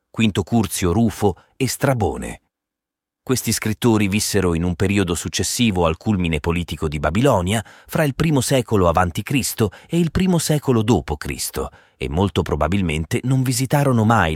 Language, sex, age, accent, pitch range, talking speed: Italian, male, 30-49, native, 80-110 Hz, 140 wpm